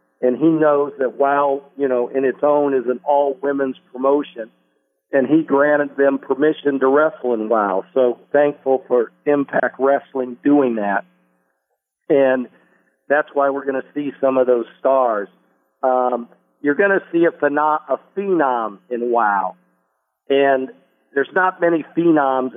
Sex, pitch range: male, 110-145 Hz